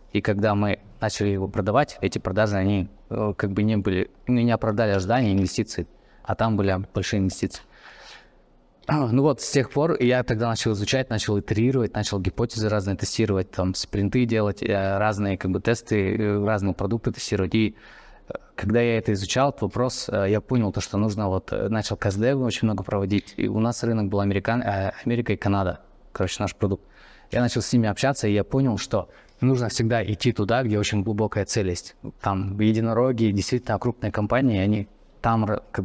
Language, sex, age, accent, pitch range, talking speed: Russian, male, 20-39, native, 100-115 Hz, 170 wpm